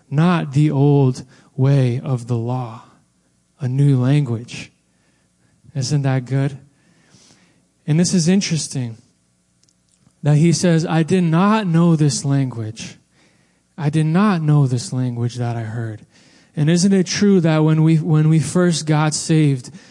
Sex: male